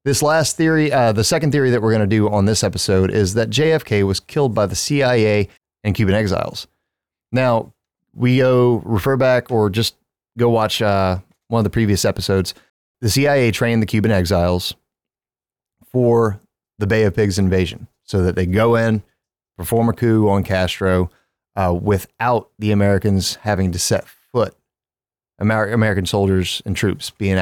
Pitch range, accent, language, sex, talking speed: 100-125 Hz, American, English, male, 170 wpm